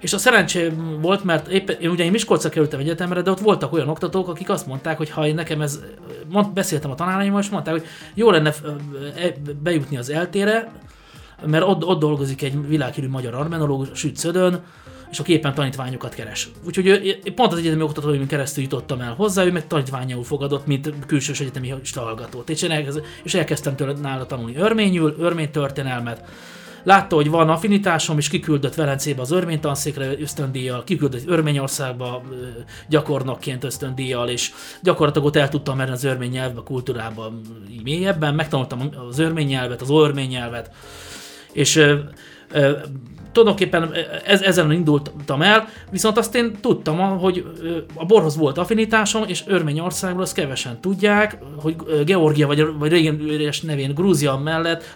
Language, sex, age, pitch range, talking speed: Hungarian, male, 30-49, 140-175 Hz, 145 wpm